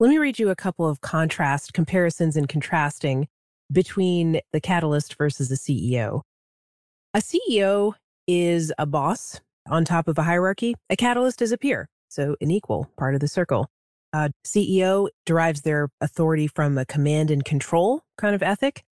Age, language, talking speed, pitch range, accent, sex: 30-49, English, 165 wpm, 145-195 Hz, American, female